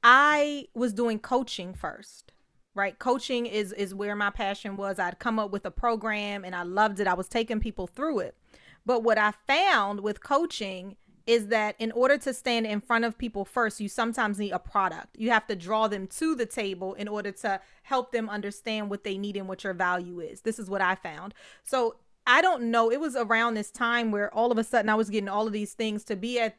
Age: 30-49